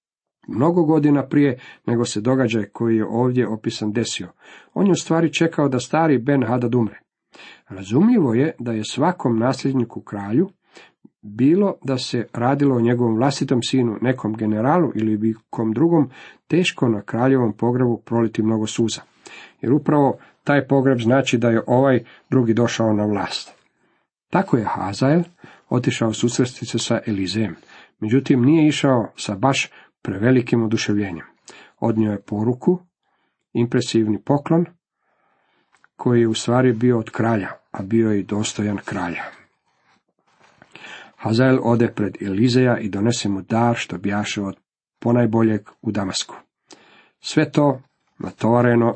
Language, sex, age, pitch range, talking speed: Croatian, male, 50-69, 110-135 Hz, 130 wpm